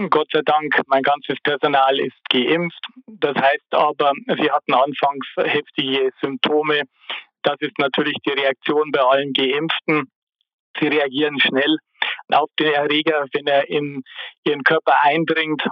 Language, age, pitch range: German, 50-69, 140-155 Hz